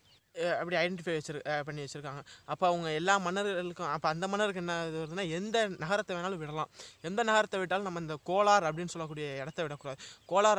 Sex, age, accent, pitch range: male, 20-39, native, 155-190 Hz